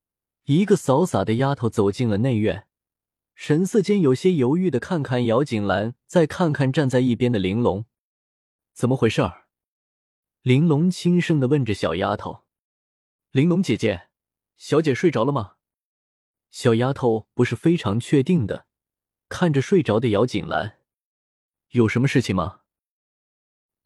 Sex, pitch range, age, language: male, 105-145 Hz, 20-39, Chinese